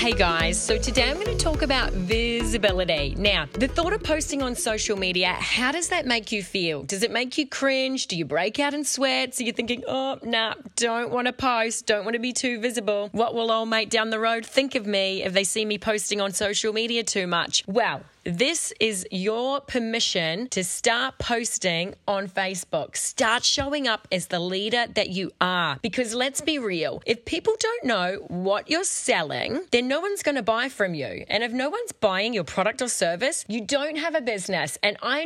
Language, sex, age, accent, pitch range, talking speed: English, female, 30-49, Australian, 200-260 Hz, 210 wpm